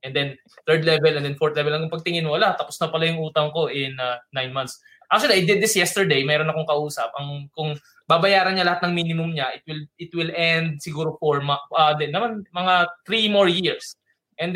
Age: 20-39